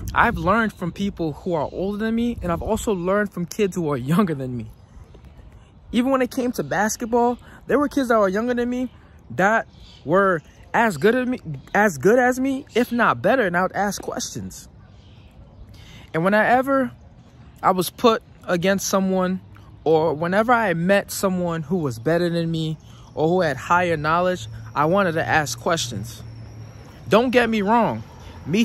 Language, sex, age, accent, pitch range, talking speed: English, male, 20-39, American, 150-210 Hz, 170 wpm